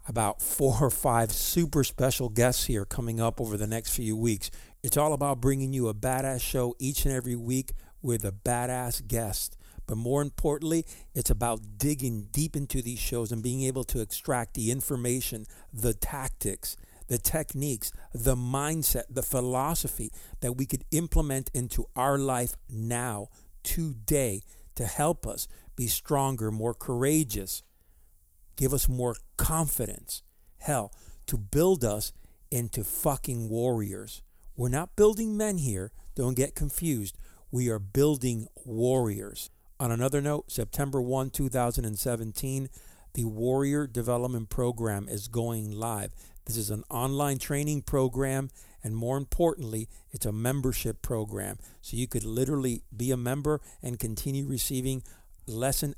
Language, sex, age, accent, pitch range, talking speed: English, male, 50-69, American, 110-135 Hz, 140 wpm